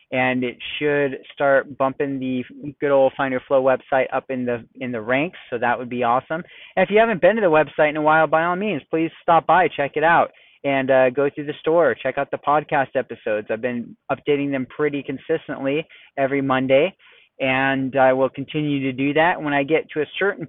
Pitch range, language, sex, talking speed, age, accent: 130-160 Hz, English, male, 215 wpm, 30-49, American